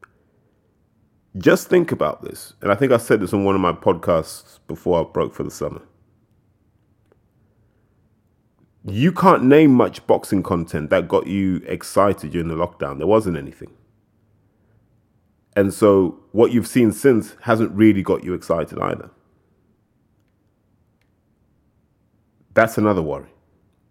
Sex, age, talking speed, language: male, 30-49, 130 wpm, English